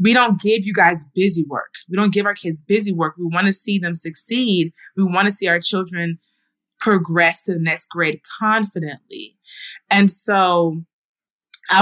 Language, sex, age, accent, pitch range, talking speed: English, female, 20-39, American, 160-195 Hz, 180 wpm